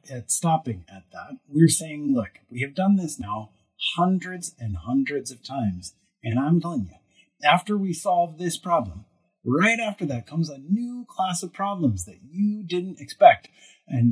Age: 30-49